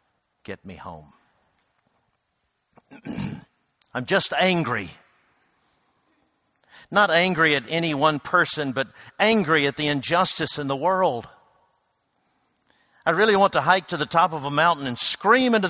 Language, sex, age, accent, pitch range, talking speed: English, male, 60-79, American, 115-160 Hz, 130 wpm